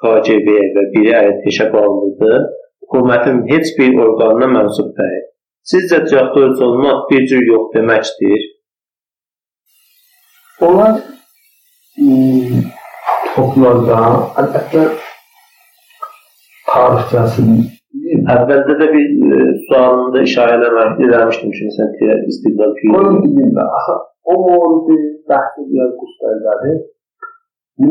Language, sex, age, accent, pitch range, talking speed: Turkish, male, 50-69, native, 115-190 Hz, 70 wpm